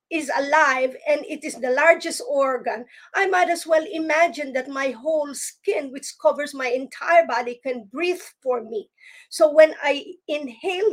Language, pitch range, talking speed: English, 255-330 Hz, 165 wpm